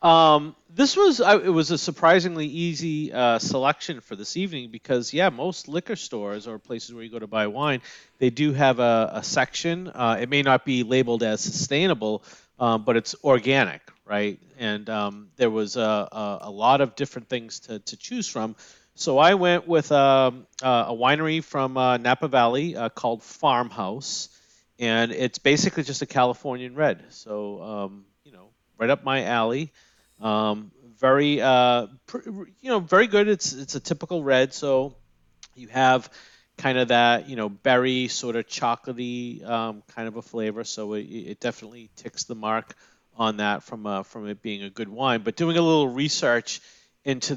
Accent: American